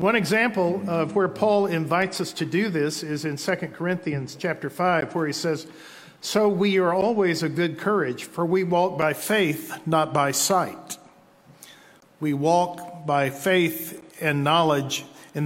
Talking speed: 160 wpm